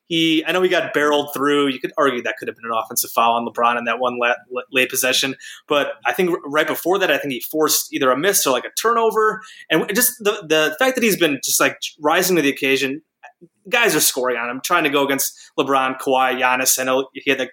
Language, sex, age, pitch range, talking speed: English, male, 20-39, 135-180 Hz, 245 wpm